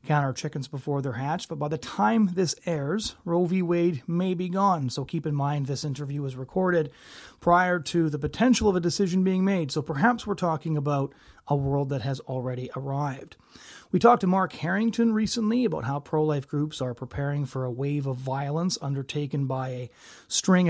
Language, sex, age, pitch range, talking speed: English, male, 30-49, 140-170 Hz, 195 wpm